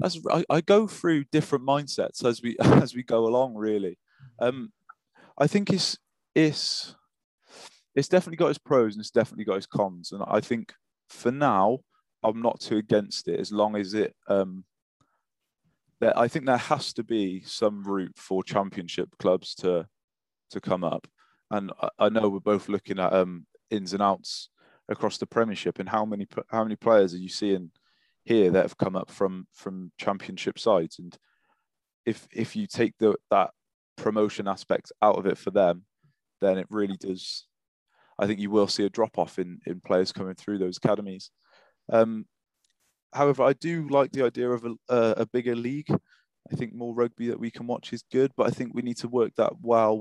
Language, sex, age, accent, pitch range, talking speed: English, male, 20-39, British, 100-125 Hz, 190 wpm